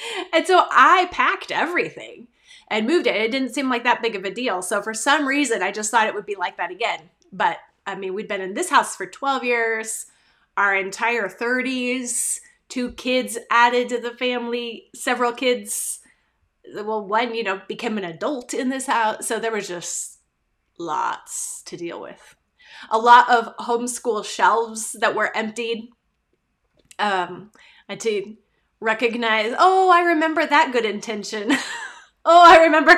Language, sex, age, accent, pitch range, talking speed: English, female, 30-49, American, 210-265 Hz, 165 wpm